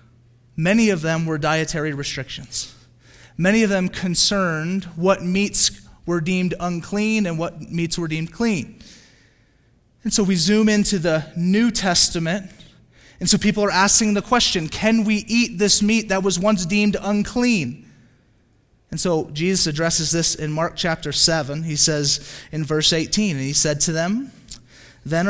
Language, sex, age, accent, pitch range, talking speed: English, male, 30-49, American, 145-190 Hz, 155 wpm